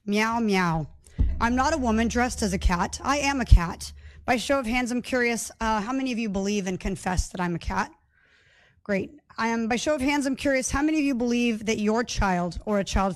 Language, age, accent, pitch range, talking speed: English, 30-49, American, 200-255 Hz, 235 wpm